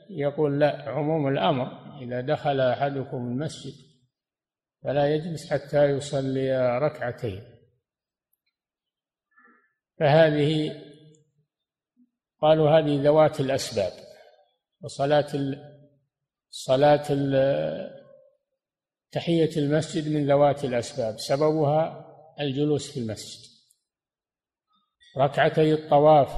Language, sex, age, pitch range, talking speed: Arabic, male, 50-69, 135-160 Hz, 70 wpm